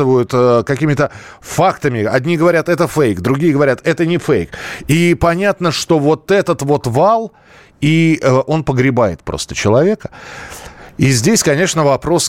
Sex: male